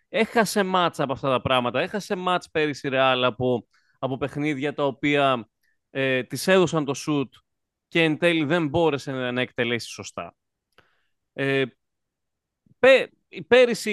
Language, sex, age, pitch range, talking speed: English, male, 30-49, 125-175 Hz, 130 wpm